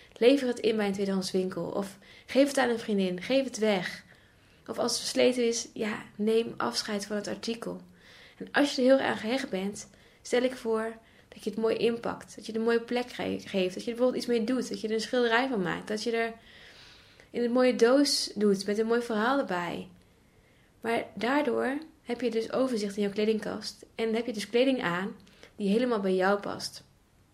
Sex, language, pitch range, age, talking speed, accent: female, Dutch, 200-240 Hz, 20-39, 215 wpm, Dutch